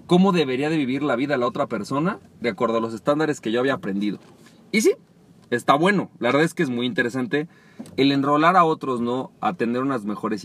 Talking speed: 220 wpm